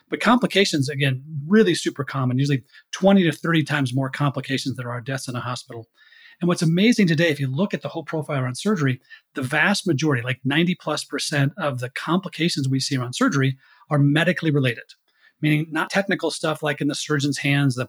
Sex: male